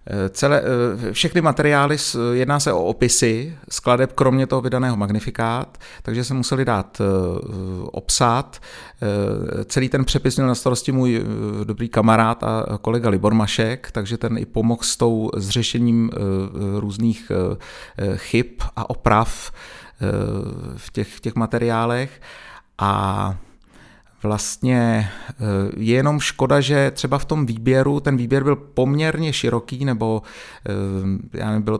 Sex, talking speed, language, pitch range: male, 115 wpm, Czech, 110-130 Hz